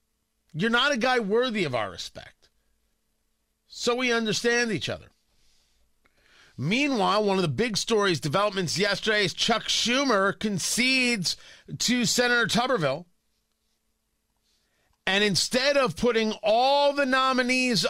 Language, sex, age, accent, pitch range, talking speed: English, male, 40-59, American, 165-230 Hz, 115 wpm